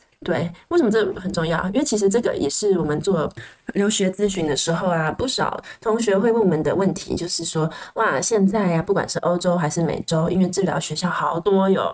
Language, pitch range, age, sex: Chinese, 170-210 Hz, 20-39, female